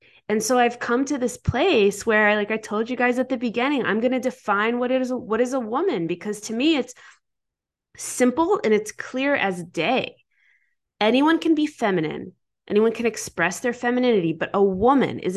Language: English